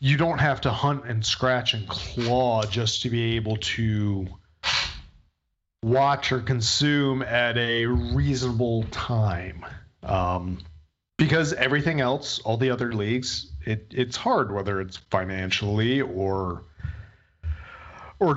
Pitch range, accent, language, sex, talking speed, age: 100-130 Hz, American, English, male, 120 wpm, 30-49